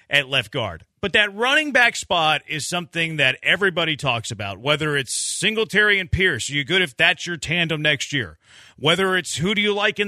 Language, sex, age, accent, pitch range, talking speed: English, male, 40-59, American, 135-185 Hz, 200 wpm